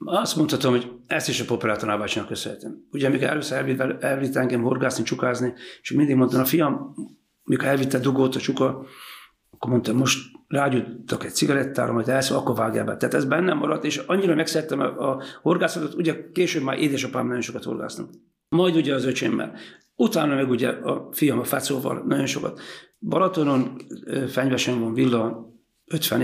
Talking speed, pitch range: 160 wpm, 125-145 Hz